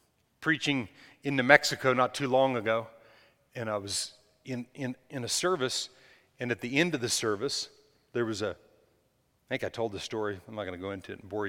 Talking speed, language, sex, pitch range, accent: 215 wpm, English, male, 120-160 Hz, American